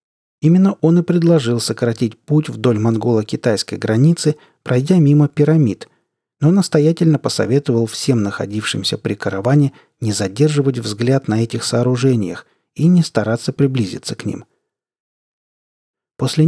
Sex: male